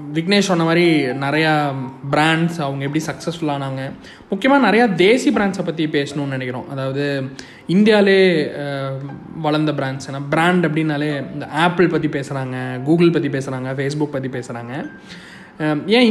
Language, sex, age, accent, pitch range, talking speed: Tamil, male, 20-39, native, 145-195 Hz, 125 wpm